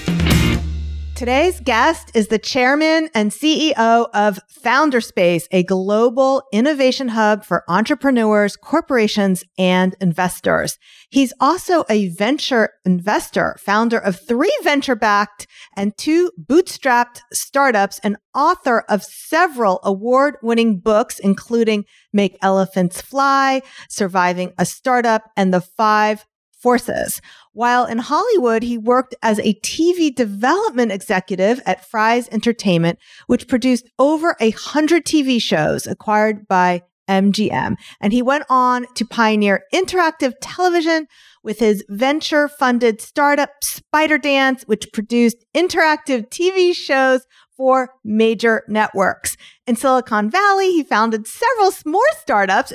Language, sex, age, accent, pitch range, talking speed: English, female, 40-59, American, 205-275 Hz, 115 wpm